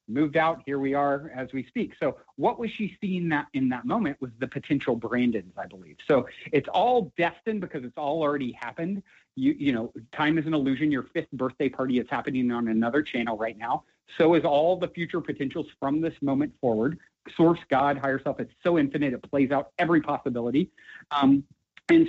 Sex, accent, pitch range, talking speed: male, American, 130-175 Hz, 200 wpm